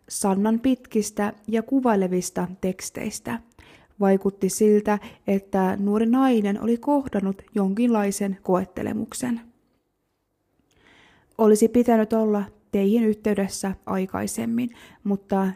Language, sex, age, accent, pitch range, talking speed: Finnish, female, 20-39, native, 195-235 Hz, 80 wpm